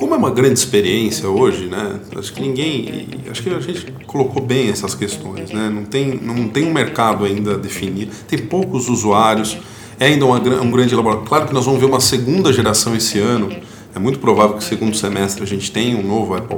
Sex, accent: male, Brazilian